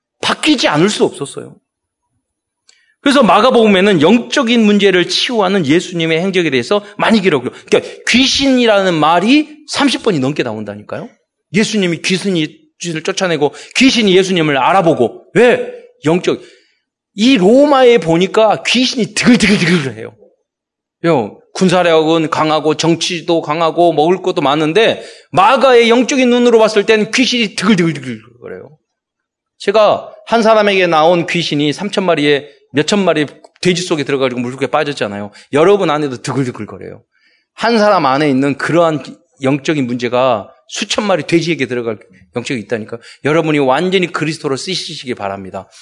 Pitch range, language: 135-220 Hz, Korean